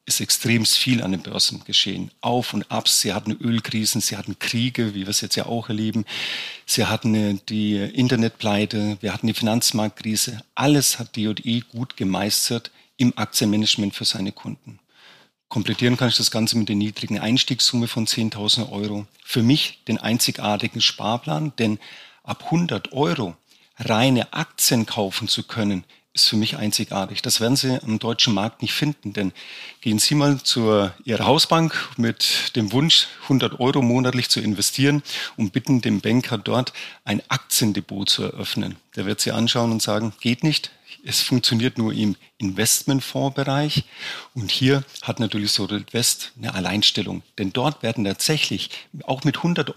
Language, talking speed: German, 160 wpm